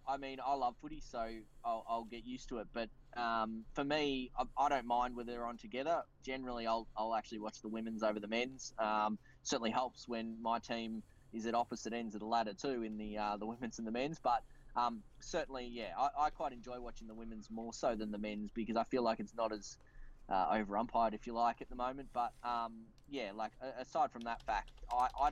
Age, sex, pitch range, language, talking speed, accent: 10-29, male, 110-130 Hz, English, 230 wpm, Australian